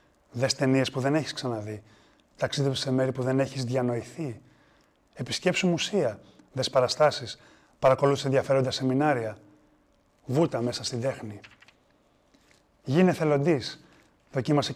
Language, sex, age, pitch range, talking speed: Greek, male, 30-49, 125-150 Hz, 100 wpm